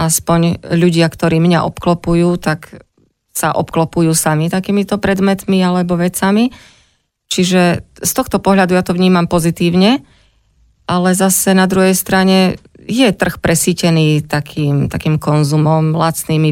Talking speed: 120 wpm